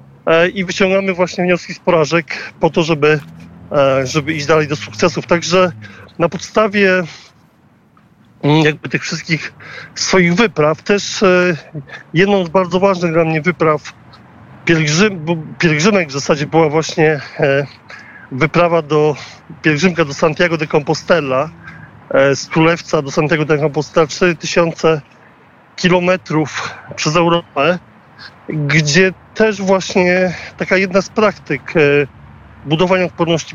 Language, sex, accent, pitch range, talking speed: Polish, male, native, 145-180 Hz, 115 wpm